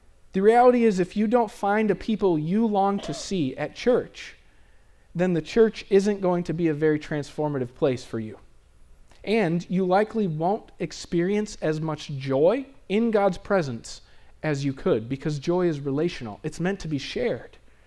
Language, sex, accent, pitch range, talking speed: English, male, American, 145-210 Hz, 170 wpm